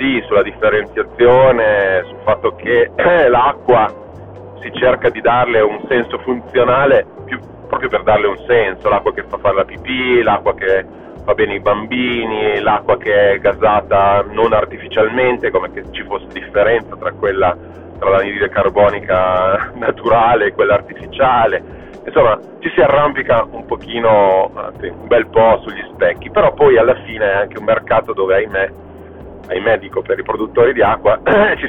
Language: Italian